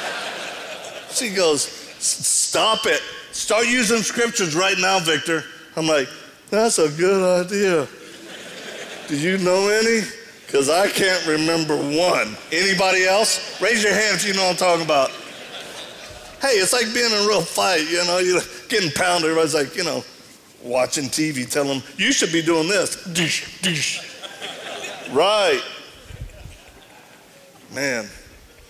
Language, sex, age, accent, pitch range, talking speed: English, male, 50-69, American, 145-195 Hz, 135 wpm